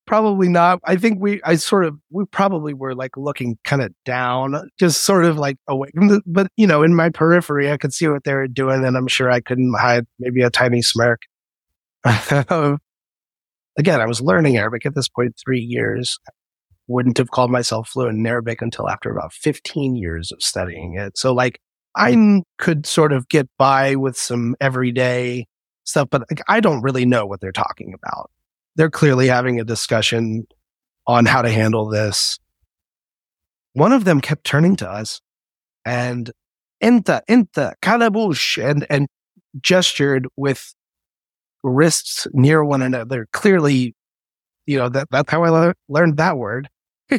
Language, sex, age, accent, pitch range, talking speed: English, male, 30-49, American, 120-165 Hz, 165 wpm